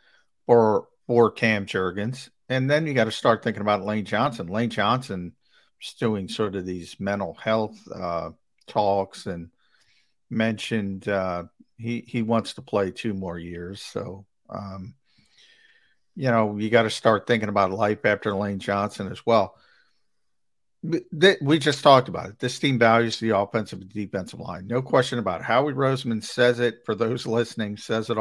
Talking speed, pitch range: 165 wpm, 105-130 Hz